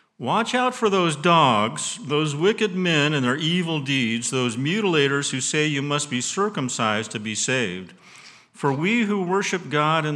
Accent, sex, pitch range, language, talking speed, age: American, male, 125-180 Hz, English, 170 wpm, 50-69